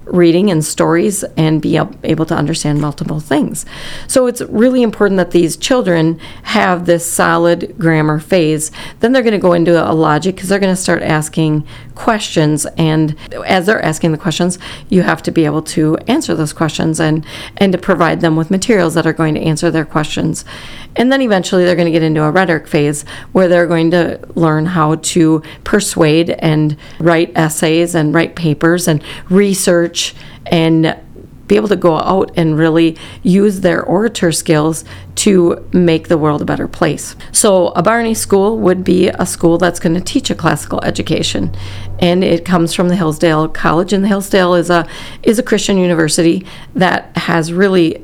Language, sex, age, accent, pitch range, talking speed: English, female, 40-59, American, 155-180 Hz, 180 wpm